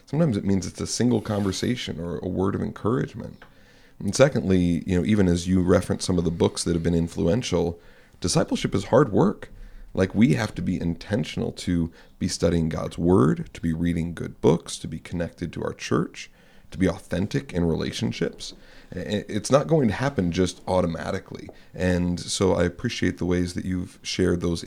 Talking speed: 185 wpm